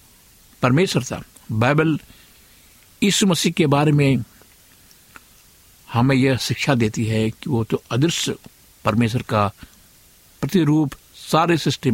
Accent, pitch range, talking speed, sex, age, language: native, 105-140 Hz, 110 wpm, male, 60-79, Hindi